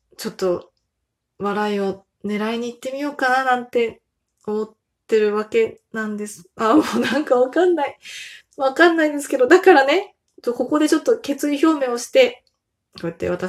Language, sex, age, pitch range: Japanese, female, 20-39, 220-300 Hz